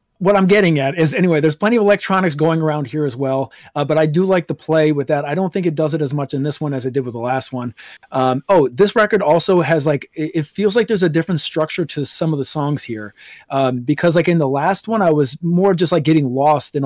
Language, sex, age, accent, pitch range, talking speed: English, male, 30-49, American, 140-170 Hz, 275 wpm